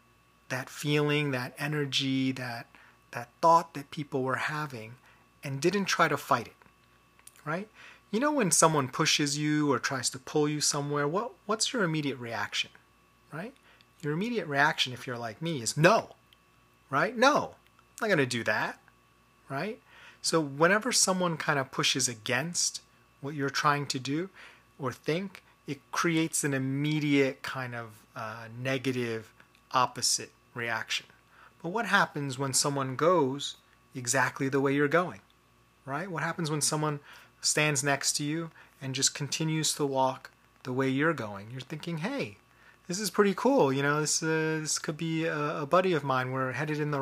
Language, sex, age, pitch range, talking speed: English, male, 30-49, 130-160 Hz, 165 wpm